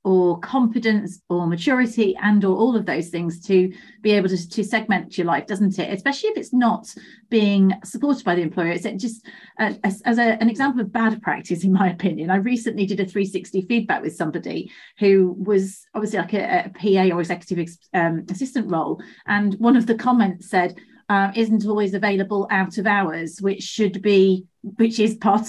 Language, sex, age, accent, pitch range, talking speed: English, female, 30-49, British, 185-235 Hz, 190 wpm